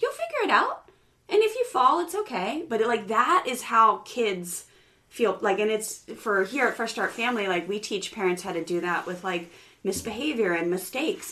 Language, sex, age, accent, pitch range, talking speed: English, female, 30-49, American, 195-270 Hz, 205 wpm